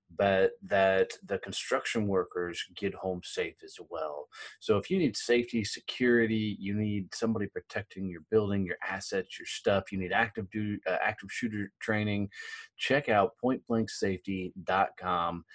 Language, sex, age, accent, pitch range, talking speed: English, male, 30-49, American, 95-120 Hz, 145 wpm